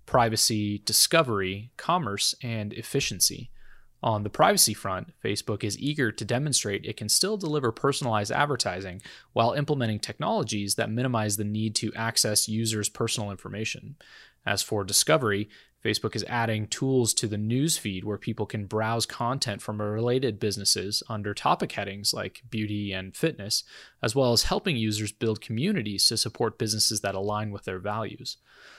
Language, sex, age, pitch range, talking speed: English, male, 20-39, 105-125 Hz, 150 wpm